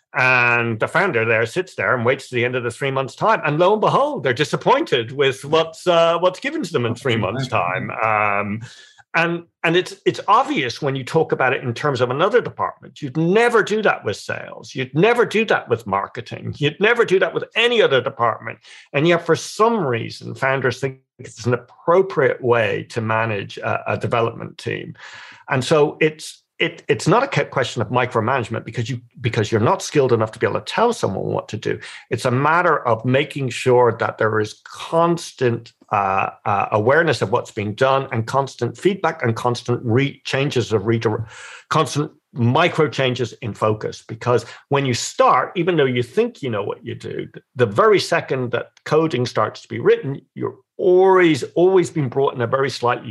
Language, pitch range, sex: English, 120-165 Hz, male